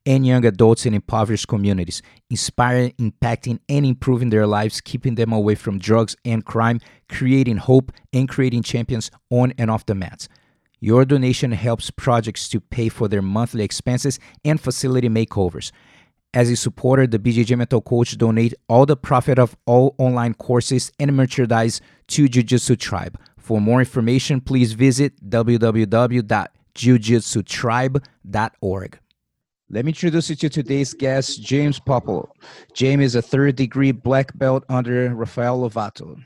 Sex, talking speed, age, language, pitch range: male, 140 wpm, 30-49, English, 115-135 Hz